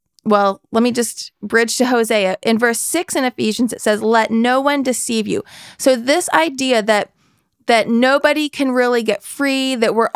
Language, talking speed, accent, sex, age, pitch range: English, 185 wpm, American, female, 30-49, 220-270 Hz